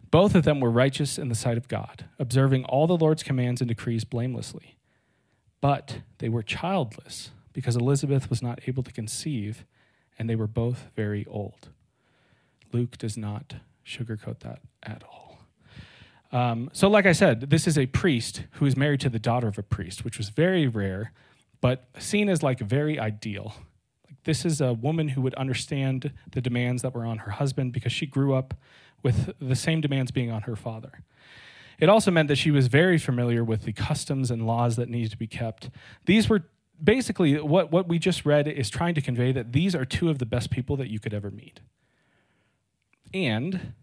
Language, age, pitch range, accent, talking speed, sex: English, 40-59, 115-145 Hz, American, 190 wpm, male